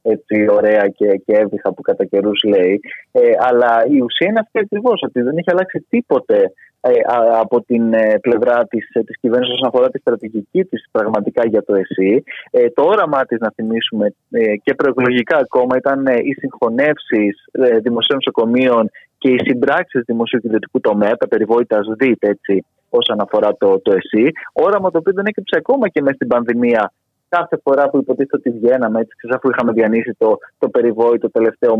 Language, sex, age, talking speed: Greek, male, 20-39, 175 wpm